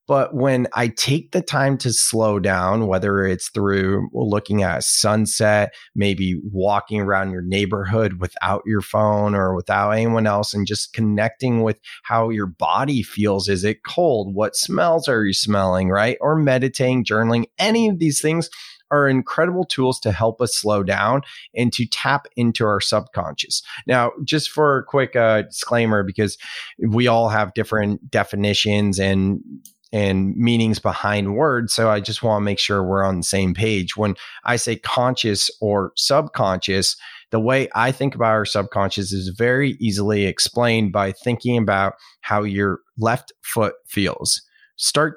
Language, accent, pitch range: English, American, 100-120 Hz